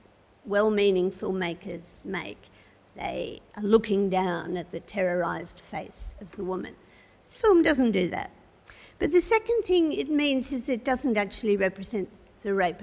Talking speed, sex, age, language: 155 wpm, female, 50-69, English